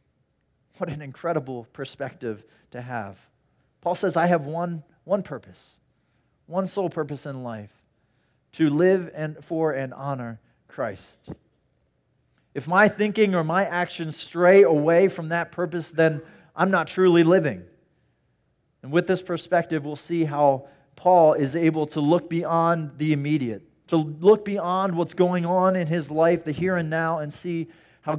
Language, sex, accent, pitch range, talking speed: English, male, American, 135-175 Hz, 155 wpm